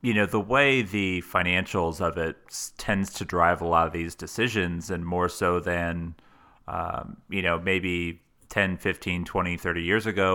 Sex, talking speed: male, 175 wpm